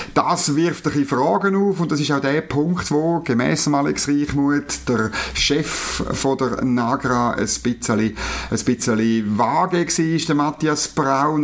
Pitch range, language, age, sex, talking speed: 115-150 Hz, German, 50-69, male, 165 wpm